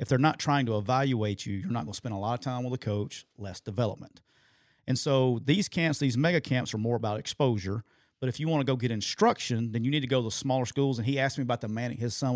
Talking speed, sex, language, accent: 280 wpm, male, English, American